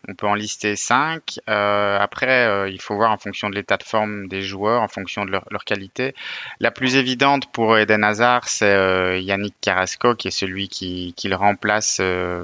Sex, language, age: male, French, 30-49